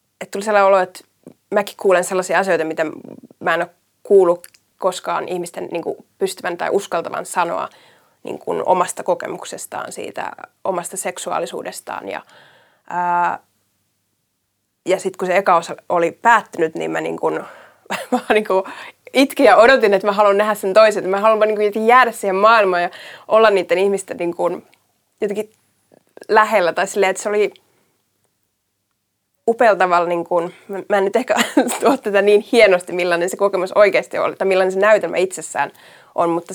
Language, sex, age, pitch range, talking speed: Finnish, female, 20-39, 165-210 Hz, 150 wpm